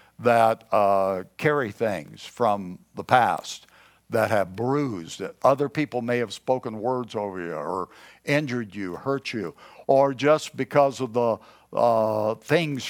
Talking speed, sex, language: 140 wpm, male, English